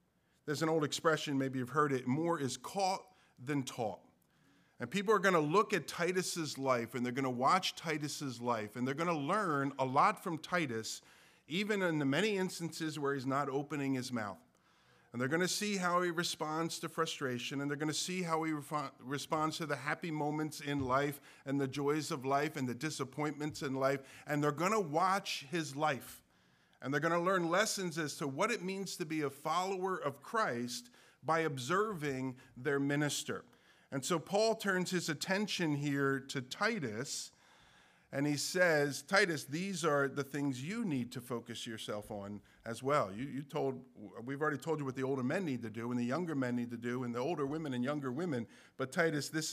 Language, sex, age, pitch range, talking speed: English, male, 50-69, 135-165 Hz, 200 wpm